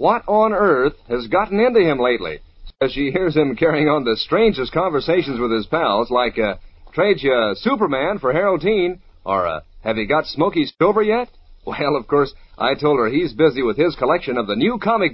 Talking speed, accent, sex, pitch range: 200 wpm, American, male, 125-205 Hz